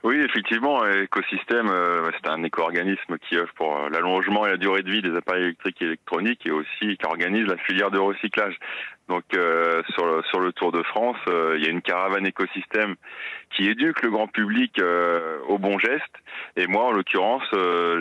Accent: French